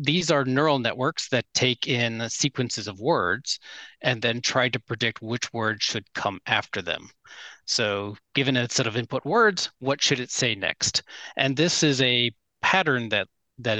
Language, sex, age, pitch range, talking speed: English, male, 30-49, 105-135 Hz, 175 wpm